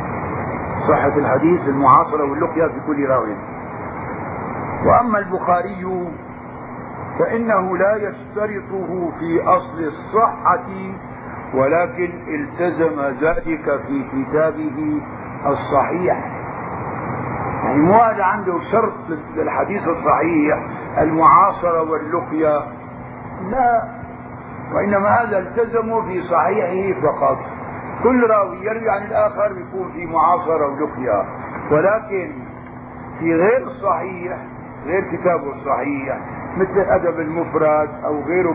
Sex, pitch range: male, 155-215 Hz